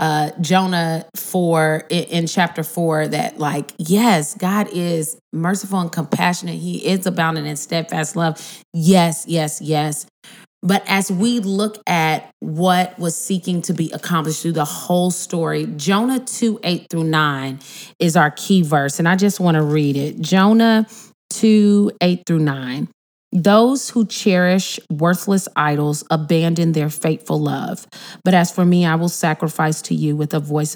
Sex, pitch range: female, 155-190 Hz